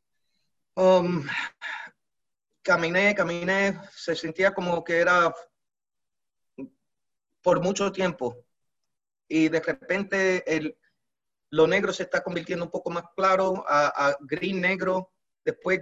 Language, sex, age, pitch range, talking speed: Spanish, male, 30-49, 145-185 Hz, 110 wpm